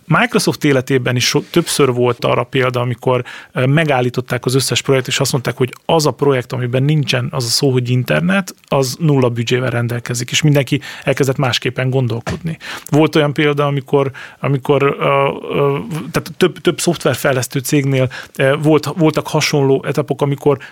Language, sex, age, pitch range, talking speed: Hungarian, male, 30-49, 130-155 Hz, 145 wpm